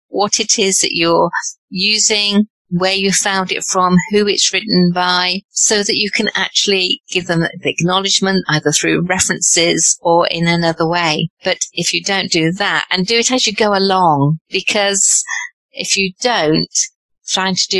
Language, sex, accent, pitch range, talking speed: English, female, British, 175-215 Hz, 170 wpm